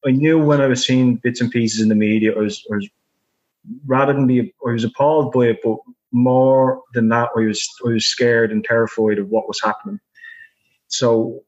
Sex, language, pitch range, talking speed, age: male, English, 110-130 Hz, 210 wpm, 20-39